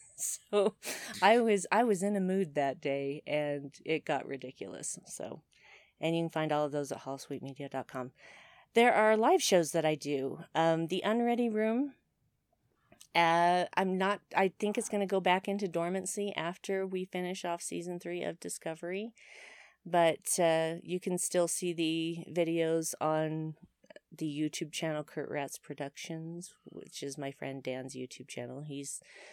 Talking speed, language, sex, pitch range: 160 wpm, English, female, 145-185 Hz